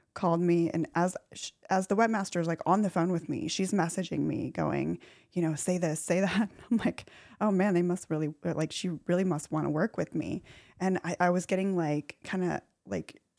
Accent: American